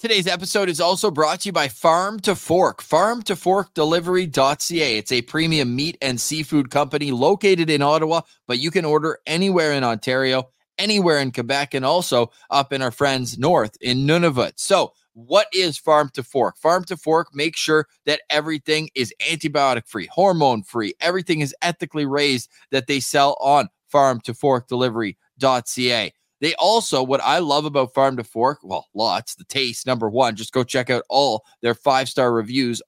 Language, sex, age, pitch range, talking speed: English, male, 20-39, 130-175 Hz, 165 wpm